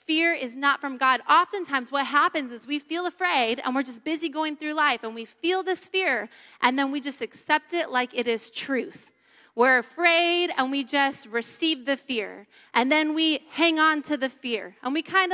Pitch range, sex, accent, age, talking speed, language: 270-370 Hz, female, American, 20-39, 205 wpm, English